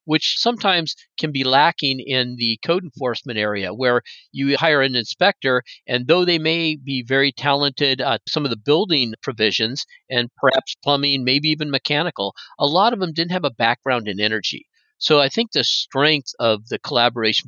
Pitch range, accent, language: 125-155 Hz, American, English